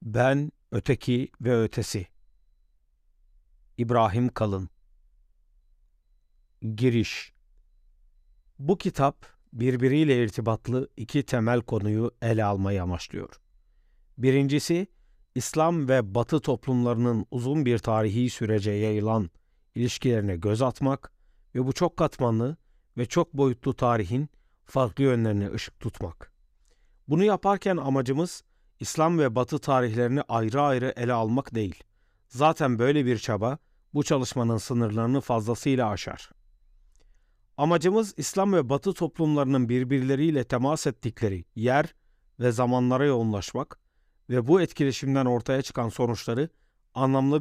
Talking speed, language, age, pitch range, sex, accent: 105 wpm, Turkish, 50-69, 110-140 Hz, male, native